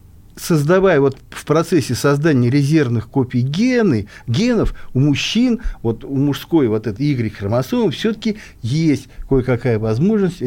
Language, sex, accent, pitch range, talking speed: Russian, male, native, 115-165 Hz, 120 wpm